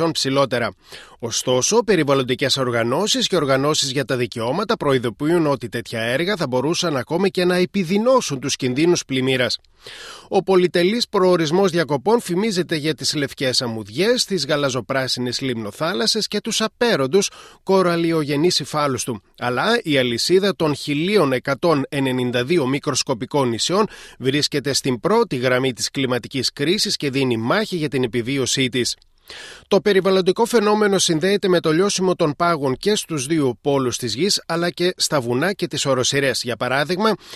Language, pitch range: Greek, 130-185 Hz